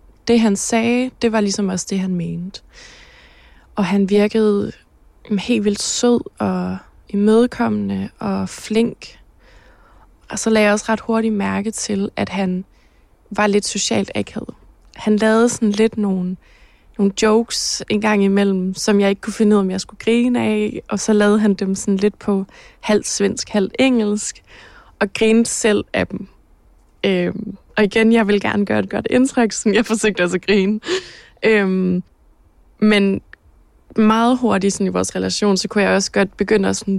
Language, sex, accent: Danish, female, native